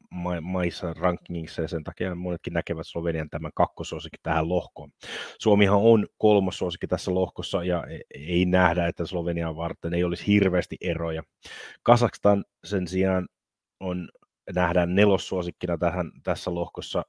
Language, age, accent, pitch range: Finnish, 30-49, native, 85-95 Hz